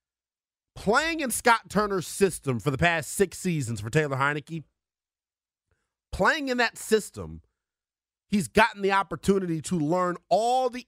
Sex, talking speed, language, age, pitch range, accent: male, 140 wpm, English, 30-49, 145-205 Hz, American